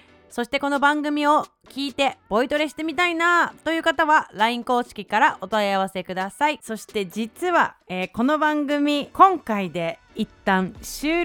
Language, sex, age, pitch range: Japanese, female, 30-49, 210-295 Hz